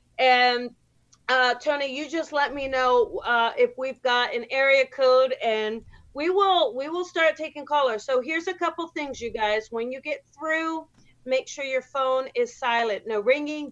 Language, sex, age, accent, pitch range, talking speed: English, female, 40-59, American, 230-310 Hz, 185 wpm